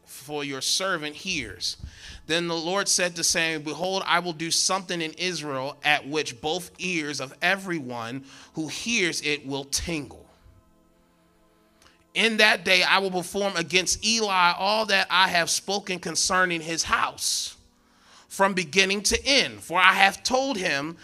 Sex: male